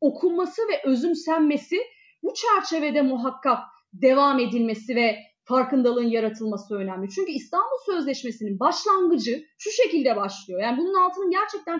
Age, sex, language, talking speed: 30-49, female, Turkish, 115 wpm